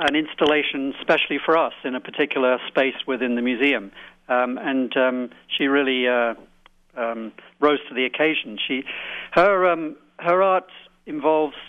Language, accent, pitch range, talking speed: English, British, 125-150 Hz, 150 wpm